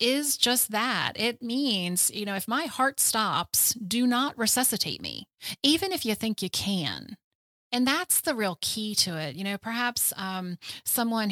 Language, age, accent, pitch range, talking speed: English, 30-49, American, 180-225 Hz, 175 wpm